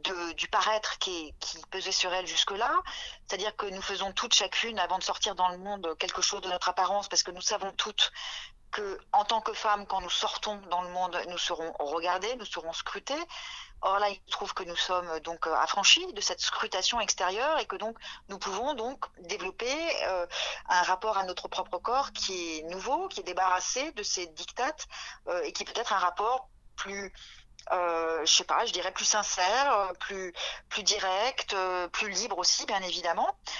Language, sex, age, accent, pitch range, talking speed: French, female, 40-59, French, 180-225 Hz, 195 wpm